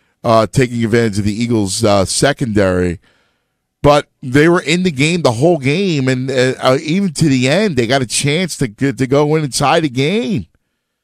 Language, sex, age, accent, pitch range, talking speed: English, male, 50-69, American, 125-195 Hz, 185 wpm